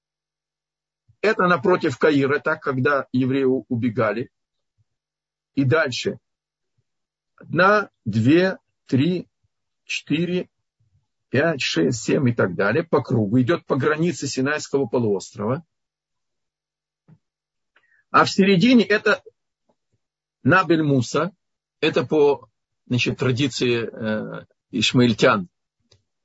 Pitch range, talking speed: 125-175 Hz, 85 wpm